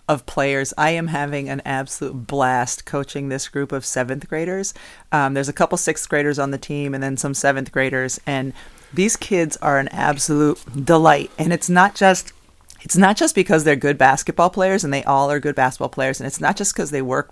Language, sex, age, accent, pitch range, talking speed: English, female, 30-49, American, 135-165 Hz, 210 wpm